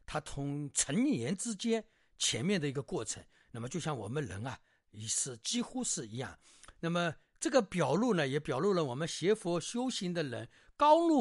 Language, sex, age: Chinese, male, 50-69